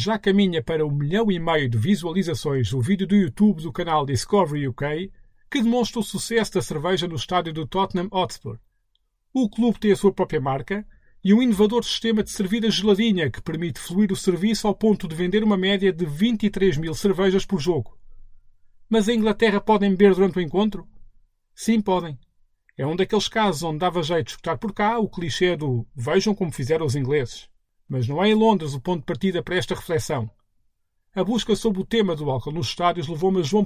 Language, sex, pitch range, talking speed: Portuguese, male, 145-205 Hz, 200 wpm